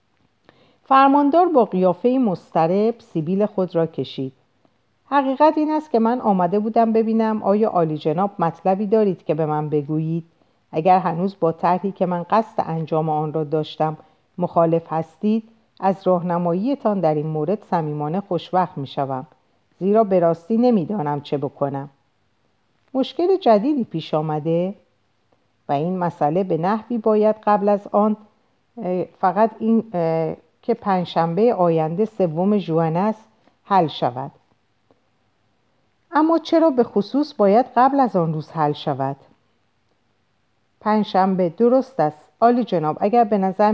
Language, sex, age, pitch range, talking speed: Persian, female, 50-69, 155-215 Hz, 125 wpm